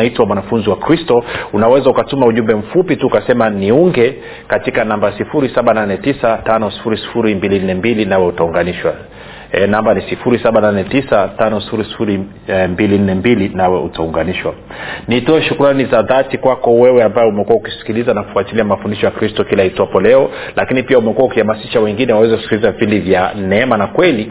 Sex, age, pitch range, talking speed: male, 40-59, 105-130 Hz, 125 wpm